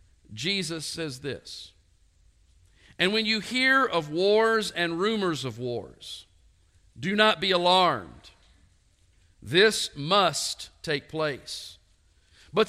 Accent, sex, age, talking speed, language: American, male, 50-69, 105 wpm, English